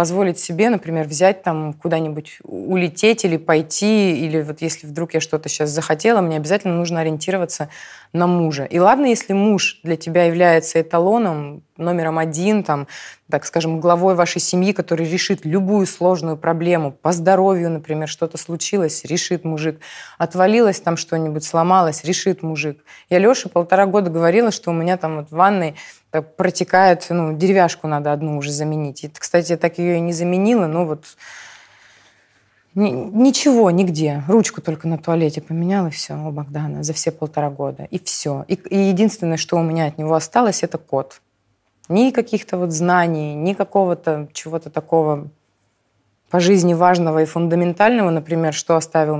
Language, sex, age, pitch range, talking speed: Russian, female, 20-39, 155-190 Hz, 155 wpm